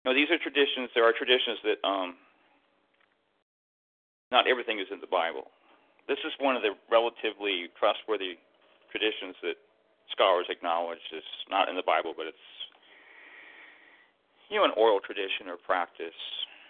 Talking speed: 145 wpm